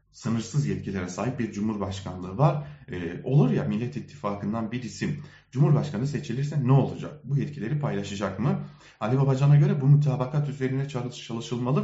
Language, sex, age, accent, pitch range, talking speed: German, male, 30-49, Turkish, 120-155 Hz, 140 wpm